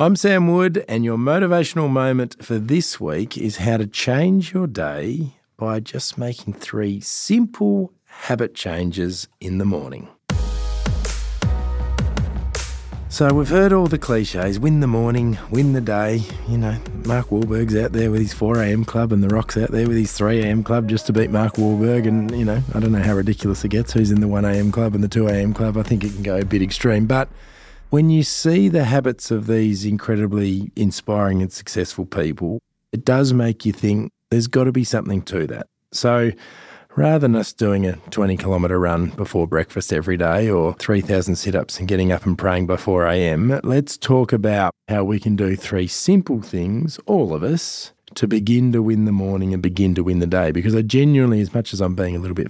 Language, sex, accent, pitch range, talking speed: English, male, Australian, 95-120 Hz, 200 wpm